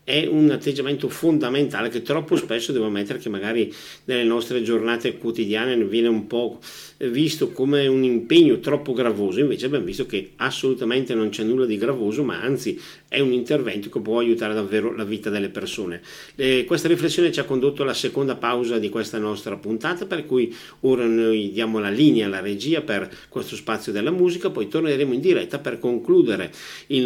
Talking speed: 180 wpm